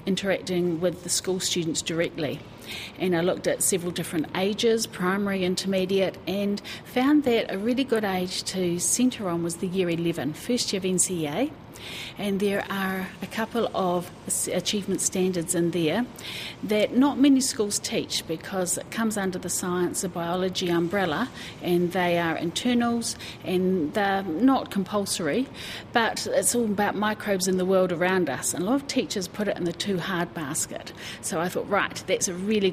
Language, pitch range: English, 170-205 Hz